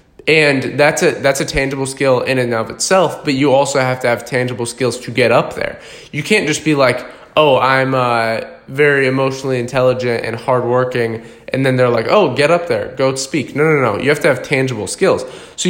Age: 20-39